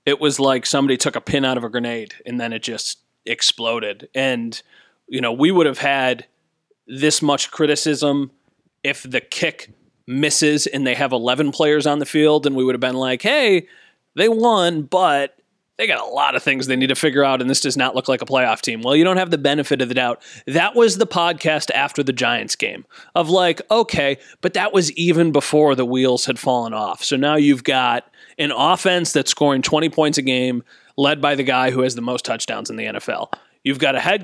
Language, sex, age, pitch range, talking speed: English, male, 30-49, 130-155 Hz, 220 wpm